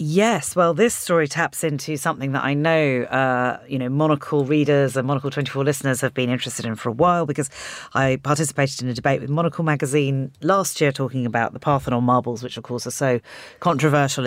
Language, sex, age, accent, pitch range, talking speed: English, female, 40-59, British, 120-155 Hz, 200 wpm